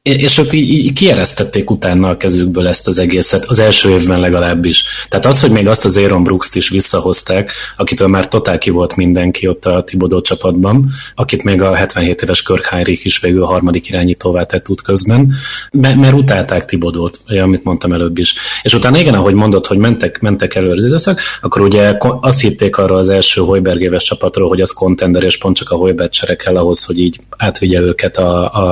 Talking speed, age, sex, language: 195 wpm, 30-49, male, Hungarian